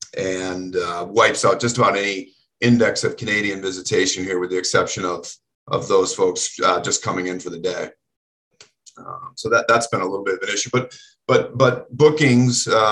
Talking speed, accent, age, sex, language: 190 wpm, American, 40-59, male, English